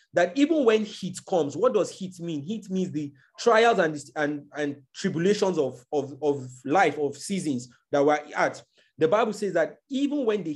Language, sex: English, male